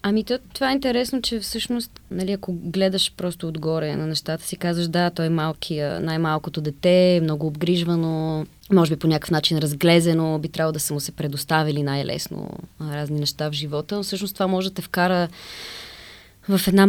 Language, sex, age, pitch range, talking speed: Bulgarian, female, 20-39, 155-190 Hz, 180 wpm